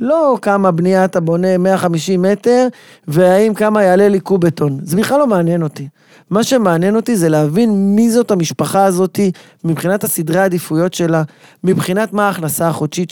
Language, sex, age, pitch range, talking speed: Hebrew, male, 30-49, 170-225 Hz, 160 wpm